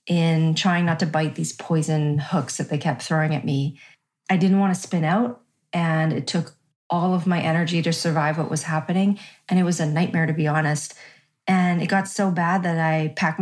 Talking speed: 215 wpm